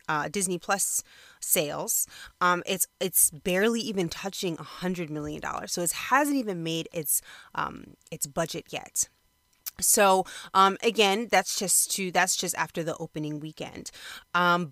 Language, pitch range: English, 165-215 Hz